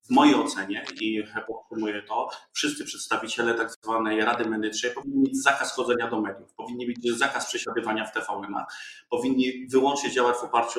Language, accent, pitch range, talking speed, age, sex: Polish, native, 115-135 Hz, 155 wpm, 30-49, male